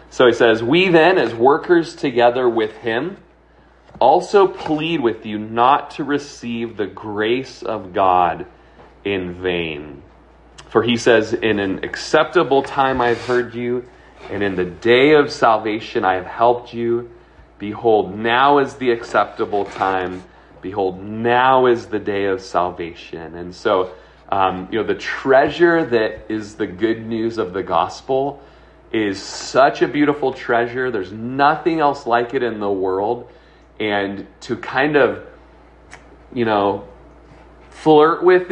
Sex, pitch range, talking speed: male, 105-130 Hz, 145 wpm